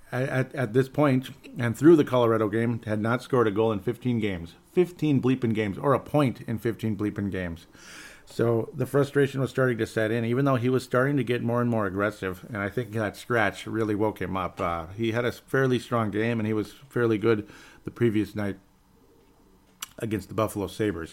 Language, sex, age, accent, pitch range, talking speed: English, male, 50-69, American, 105-125 Hz, 210 wpm